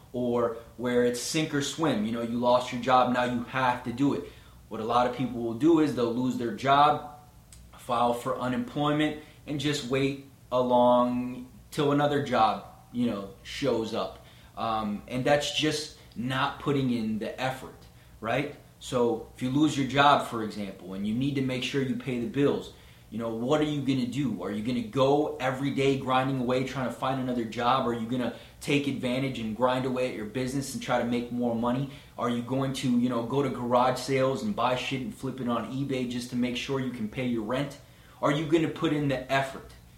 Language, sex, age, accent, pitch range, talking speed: English, male, 20-39, American, 120-140 Hz, 215 wpm